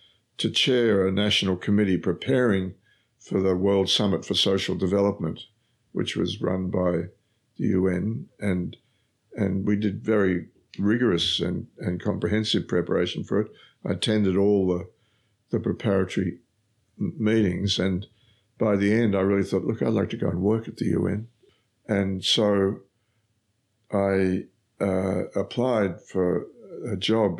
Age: 60-79